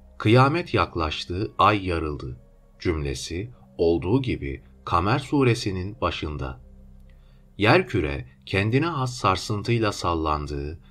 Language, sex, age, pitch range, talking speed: Turkish, male, 40-59, 70-115 Hz, 90 wpm